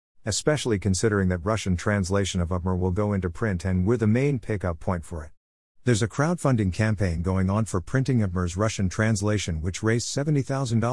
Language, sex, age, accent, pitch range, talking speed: English, male, 50-69, American, 90-115 Hz, 175 wpm